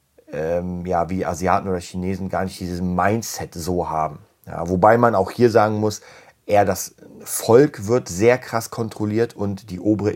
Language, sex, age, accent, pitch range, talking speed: German, male, 30-49, German, 95-105 Hz, 165 wpm